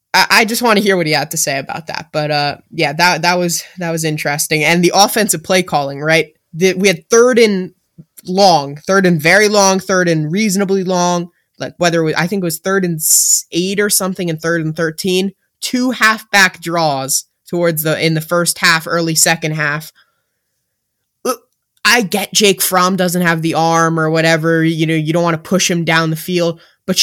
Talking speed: 205 wpm